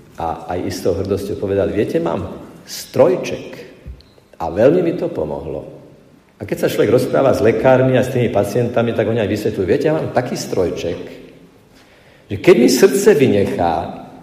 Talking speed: 160 wpm